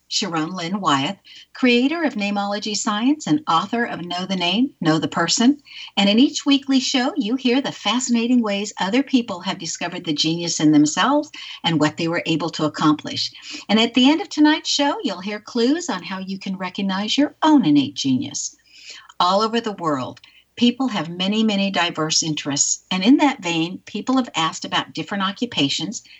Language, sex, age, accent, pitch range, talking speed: English, female, 60-79, American, 165-250 Hz, 185 wpm